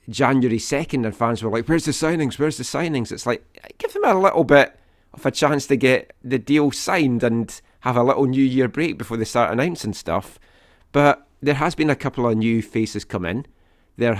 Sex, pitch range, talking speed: male, 105-135 Hz, 215 wpm